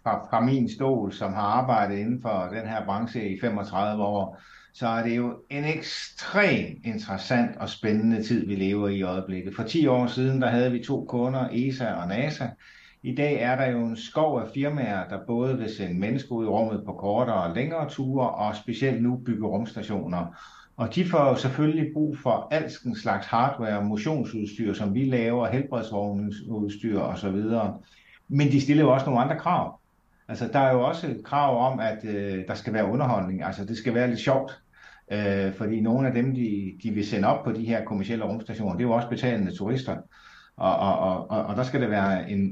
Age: 60-79